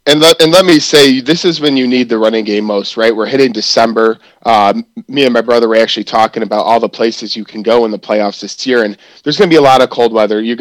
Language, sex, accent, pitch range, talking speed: English, male, American, 110-125 Hz, 275 wpm